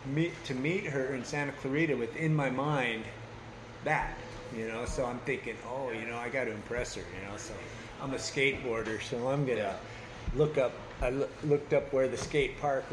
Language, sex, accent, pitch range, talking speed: English, male, American, 120-150 Hz, 200 wpm